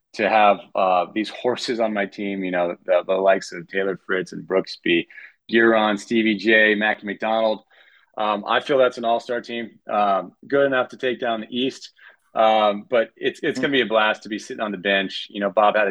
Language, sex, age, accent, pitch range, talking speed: English, male, 30-49, American, 100-120 Hz, 215 wpm